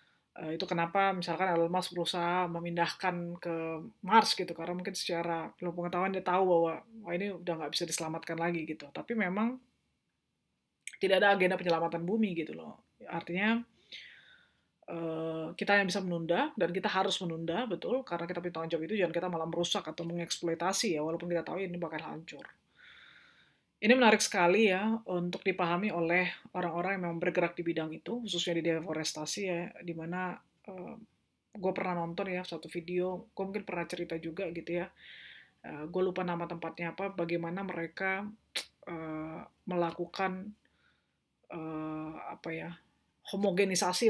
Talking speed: 150 wpm